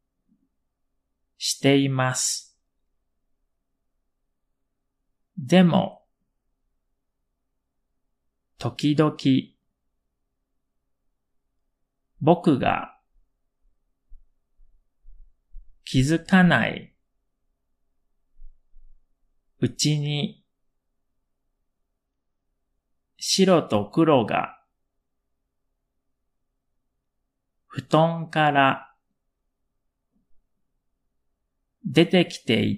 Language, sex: Japanese, male